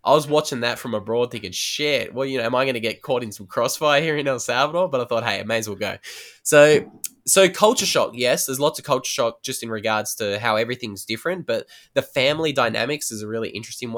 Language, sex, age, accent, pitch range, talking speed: English, male, 10-29, Australian, 100-120 Hz, 250 wpm